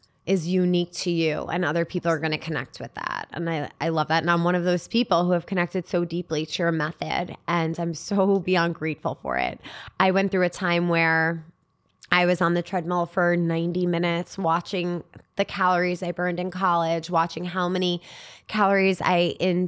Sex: female